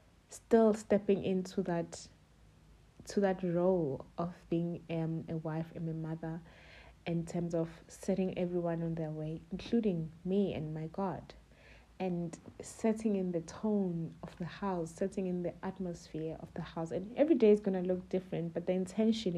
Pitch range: 165-190 Hz